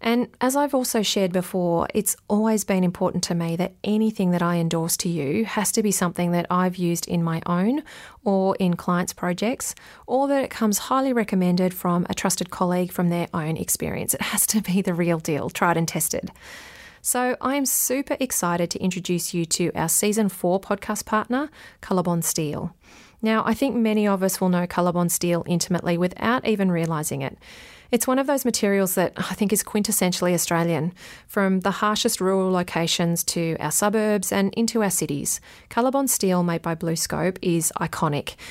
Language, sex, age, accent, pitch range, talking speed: English, female, 30-49, Australian, 175-220 Hz, 185 wpm